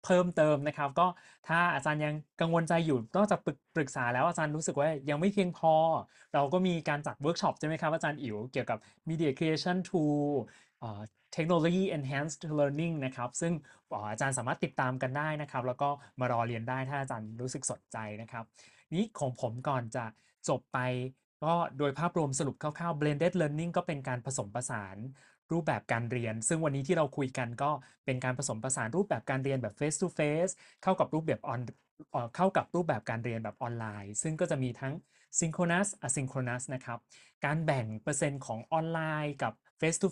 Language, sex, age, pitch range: Thai, male, 20-39, 125-165 Hz